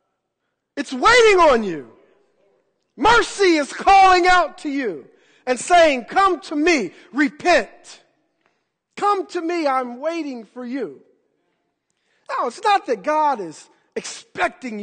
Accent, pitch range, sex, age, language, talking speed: American, 220-320 Hz, male, 50-69, English, 120 wpm